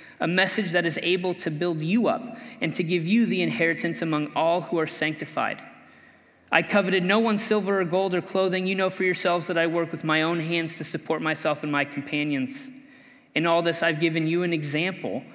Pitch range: 160-235 Hz